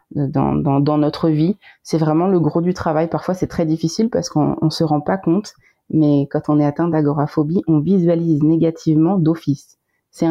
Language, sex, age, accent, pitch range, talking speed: French, female, 30-49, French, 145-170 Hz, 190 wpm